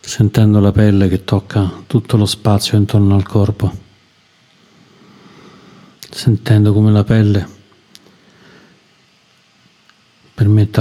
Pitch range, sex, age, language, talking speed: 100-110 Hz, male, 50-69, Italian, 90 wpm